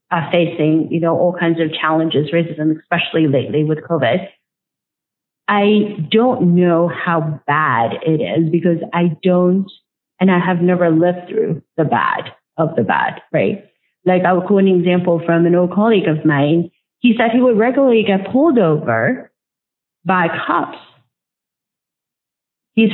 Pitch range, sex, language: 170-220 Hz, female, English